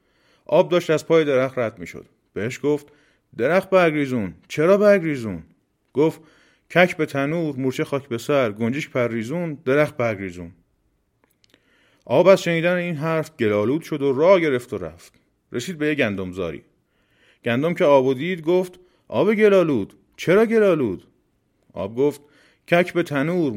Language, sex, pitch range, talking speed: Persian, male, 125-175 Hz, 155 wpm